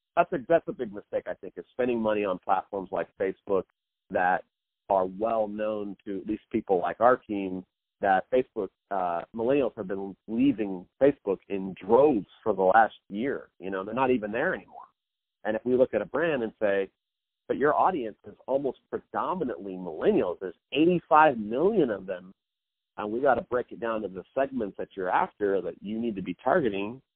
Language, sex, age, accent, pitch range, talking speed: English, male, 40-59, American, 95-130 Hz, 190 wpm